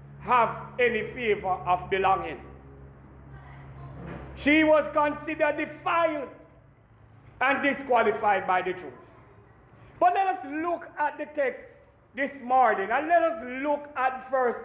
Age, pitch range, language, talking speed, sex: 50-69, 230-320 Hz, English, 120 wpm, male